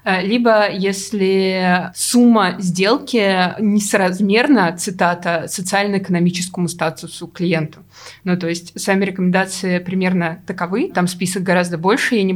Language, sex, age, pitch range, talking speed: Russian, female, 20-39, 180-210 Hz, 105 wpm